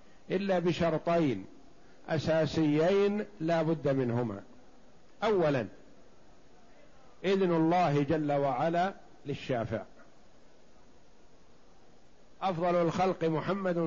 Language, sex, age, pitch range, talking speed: Arabic, male, 50-69, 150-180 Hz, 65 wpm